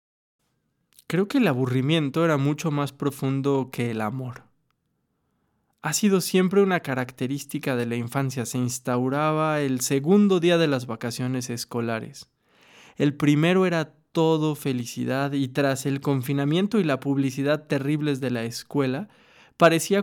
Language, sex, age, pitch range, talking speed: Spanish, male, 20-39, 130-160 Hz, 135 wpm